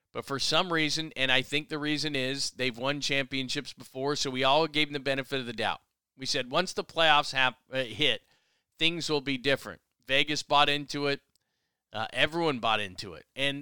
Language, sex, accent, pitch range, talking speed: English, male, American, 130-150 Hz, 205 wpm